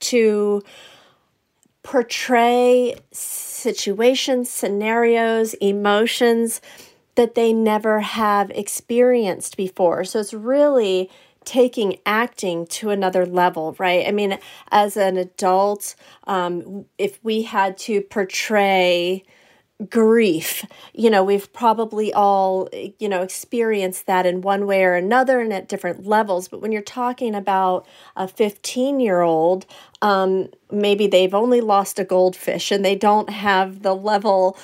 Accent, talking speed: American, 125 wpm